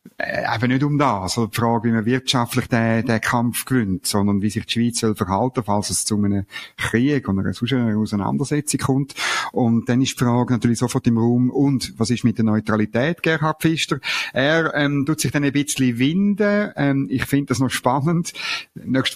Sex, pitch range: male, 120-150 Hz